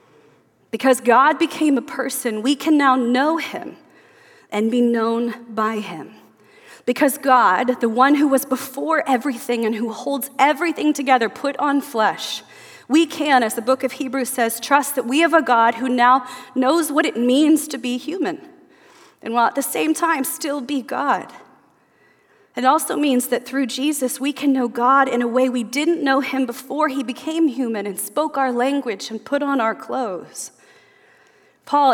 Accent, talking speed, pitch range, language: American, 175 wpm, 230-285 Hz, English